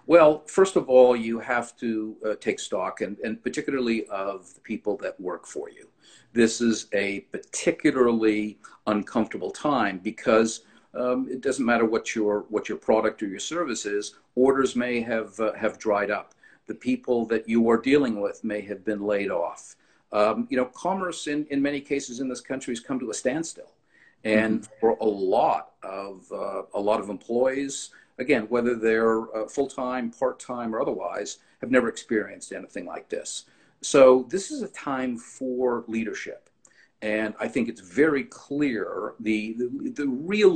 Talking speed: 170 wpm